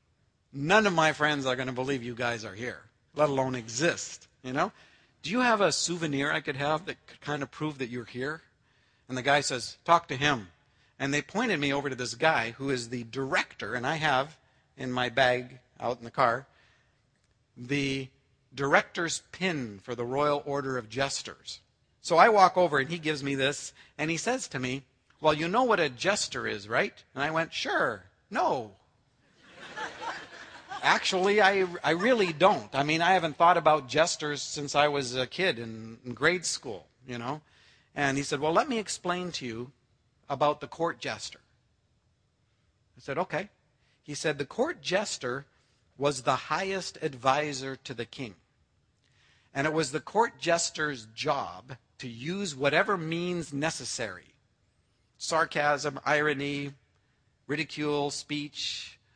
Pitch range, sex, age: 125-155 Hz, male, 50-69